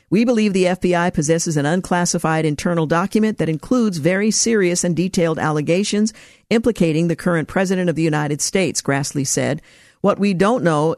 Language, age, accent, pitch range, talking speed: English, 50-69, American, 155-185 Hz, 165 wpm